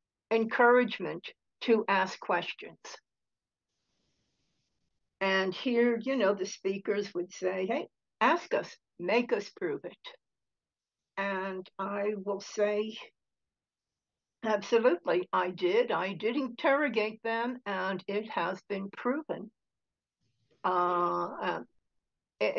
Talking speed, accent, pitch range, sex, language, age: 95 wpm, American, 190-235 Hz, female, English, 60-79